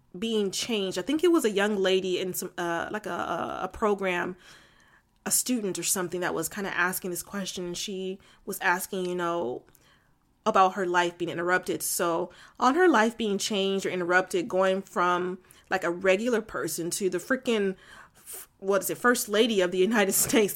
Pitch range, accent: 190-235 Hz, American